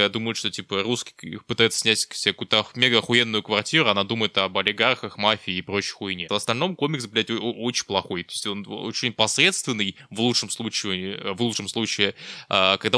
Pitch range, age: 100-125 Hz, 20-39